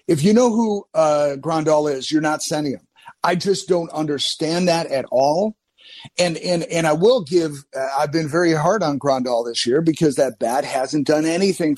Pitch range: 150-180 Hz